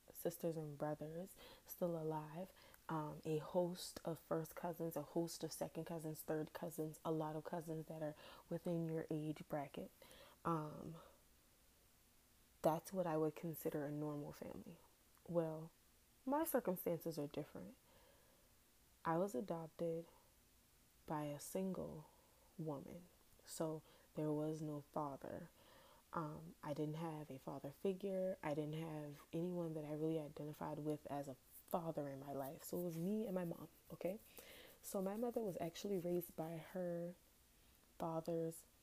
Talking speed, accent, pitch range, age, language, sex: 145 wpm, American, 155-175 Hz, 20-39, English, female